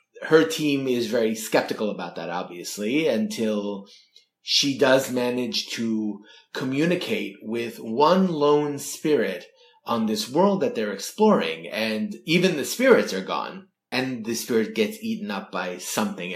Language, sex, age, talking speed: English, male, 30-49, 140 wpm